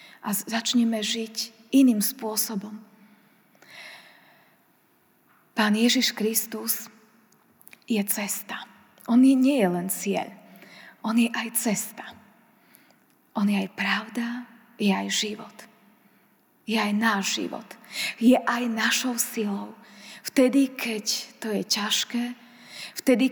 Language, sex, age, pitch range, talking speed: Slovak, female, 20-39, 210-240 Hz, 105 wpm